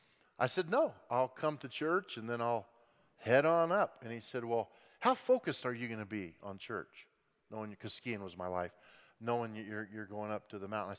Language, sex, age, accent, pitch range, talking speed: English, male, 40-59, American, 130-170 Hz, 225 wpm